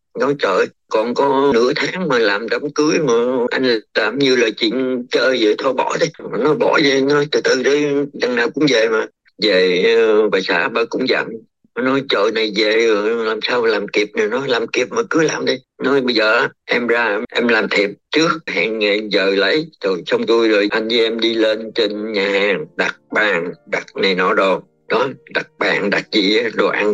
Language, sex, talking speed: Vietnamese, male, 210 wpm